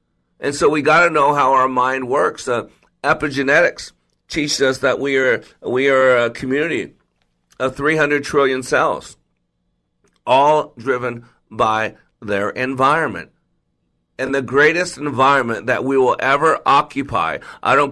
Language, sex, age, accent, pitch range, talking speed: English, male, 50-69, American, 100-135 Hz, 135 wpm